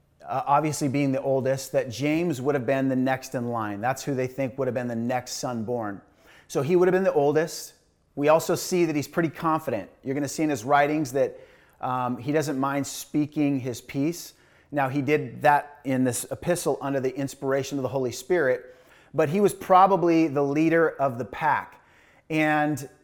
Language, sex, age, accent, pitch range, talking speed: English, male, 30-49, American, 130-160 Hz, 205 wpm